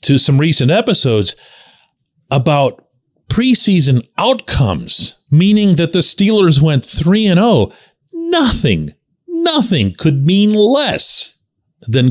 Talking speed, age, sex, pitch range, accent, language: 95 wpm, 40-59, male, 105-170 Hz, American, English